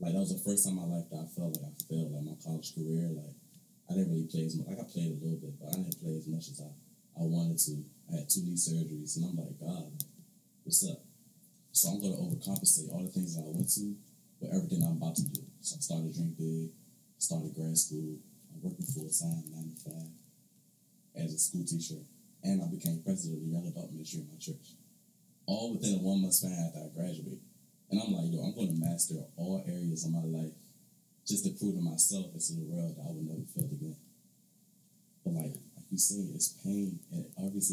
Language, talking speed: English, 235 wpm